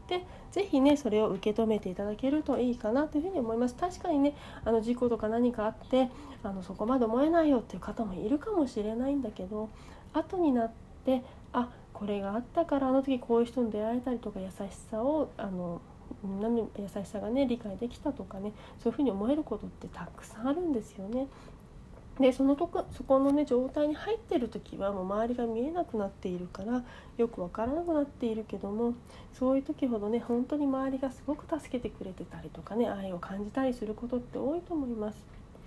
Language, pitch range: Japanese, 215-280 Hz